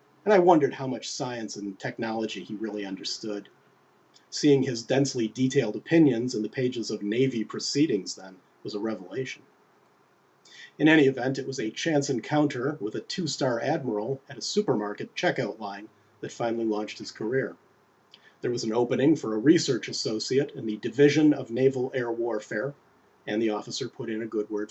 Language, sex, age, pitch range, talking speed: English, male, 40-59, 105-135 Hz, 170 wpm